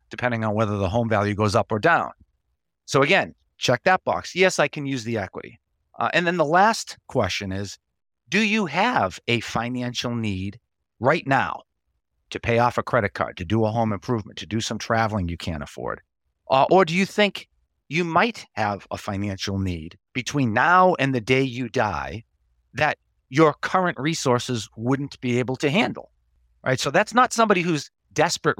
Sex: male